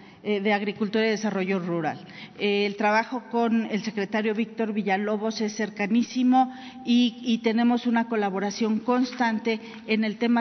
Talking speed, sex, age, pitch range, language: 140 wpm, female, 40-59, 210-245 Hz, Spanish